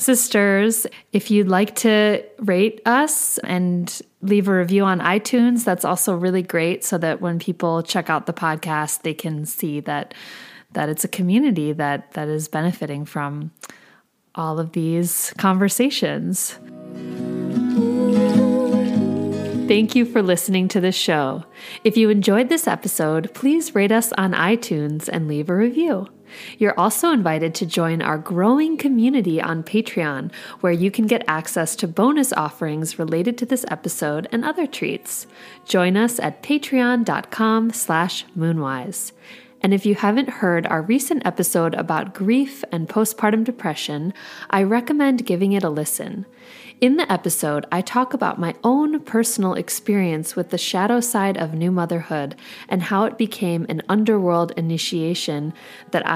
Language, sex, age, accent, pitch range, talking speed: English, female, 30-49, American, 165-230 Hz, 145 wpm